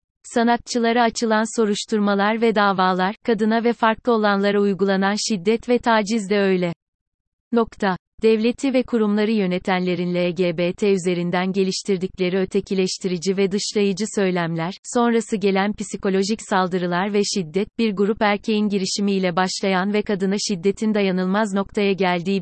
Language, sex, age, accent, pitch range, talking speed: Turkish, female, 30-49, native, 190-225 Hz, 120 wpm